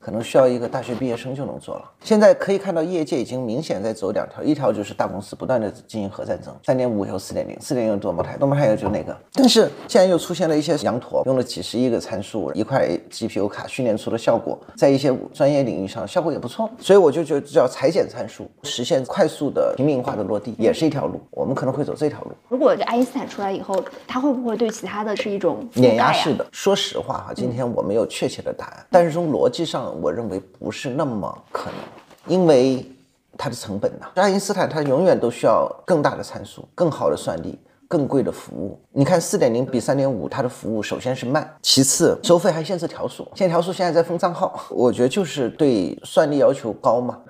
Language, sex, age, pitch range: Chinese, male, 30-49, 130-205 Hz